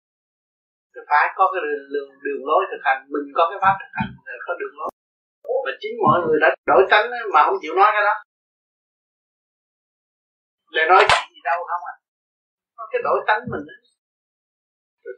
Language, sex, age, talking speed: Vietnamese, male, 20-39, 180 wpm